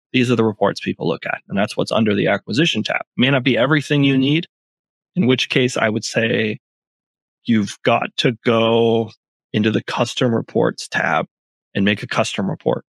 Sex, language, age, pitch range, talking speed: male, English, 20-39, 110-130 Hz, 185 wpm